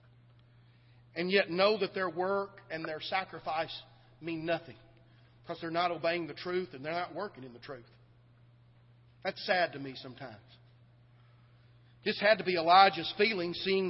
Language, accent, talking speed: English, American, 155 wpm